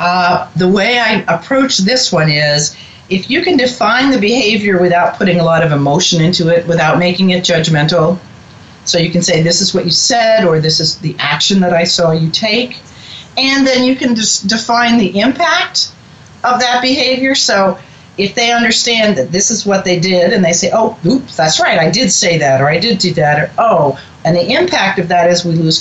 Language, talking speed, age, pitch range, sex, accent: English, 215 wpm, 40-59, 165-230 Hz, female, American